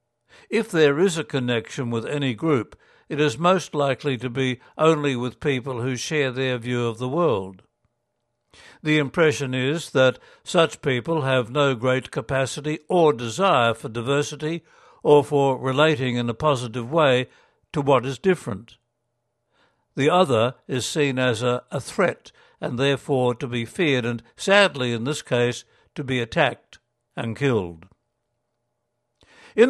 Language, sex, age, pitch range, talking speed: English, male, 60-79, 125-150 Hz, 150 wpm